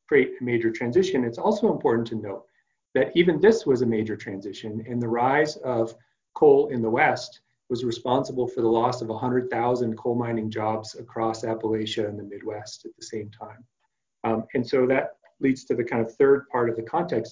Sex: male